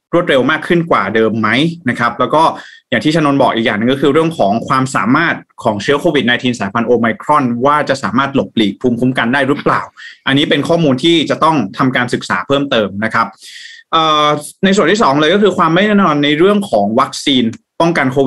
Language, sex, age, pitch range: Thai, male, 20-39, 120-160 Hz